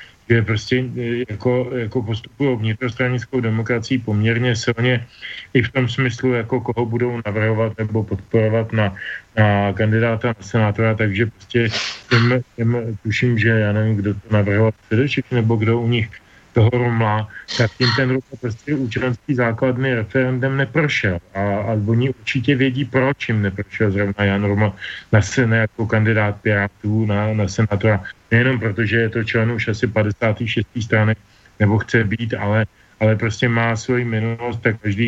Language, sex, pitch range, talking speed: Slovak, male, 105-120 Hz, 150 wpm